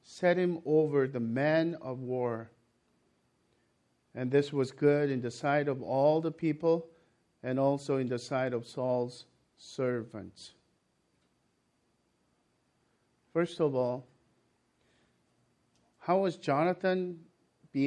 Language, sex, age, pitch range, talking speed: English, male, 50-69, 130-170 Hz, 110 wpm